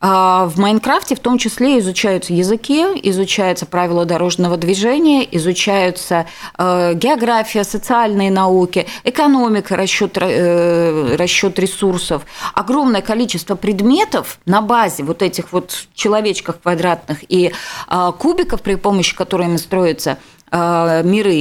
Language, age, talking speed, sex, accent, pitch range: Russian, 30-49, 100 wpm, female, native, 175-235 Hz